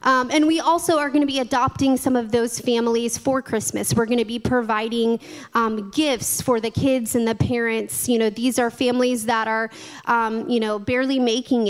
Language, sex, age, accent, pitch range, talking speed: English, female, 20-39, American, 220-260 Hz, 195 wpm